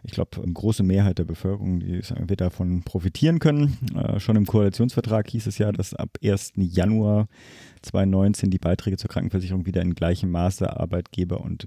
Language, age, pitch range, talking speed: German, 30-49, 95-110 Hz, 170 wpm